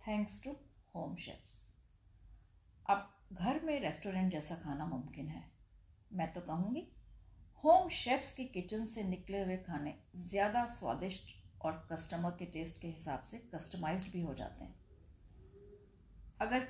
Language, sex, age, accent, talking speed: Hindi, female, 40-59, native, 135 wpm